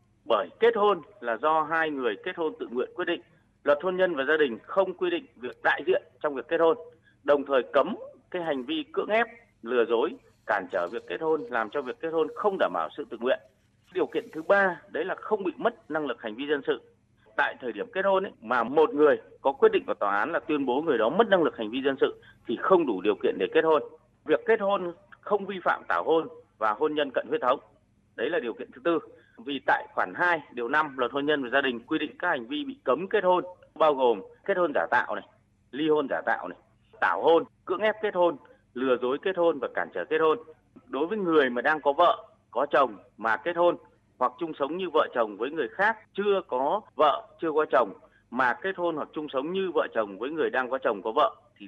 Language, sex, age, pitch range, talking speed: Vietnamese, male, 30-49, 145-225 Hz, 250 wpm